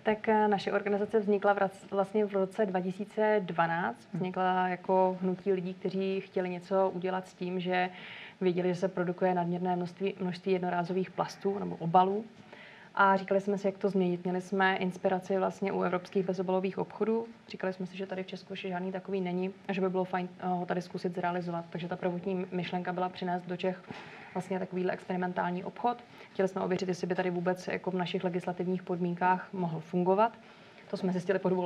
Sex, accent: female, native